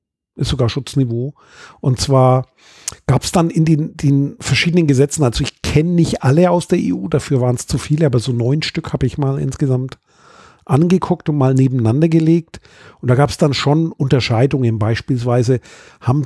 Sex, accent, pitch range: male, German, 135-160 Hz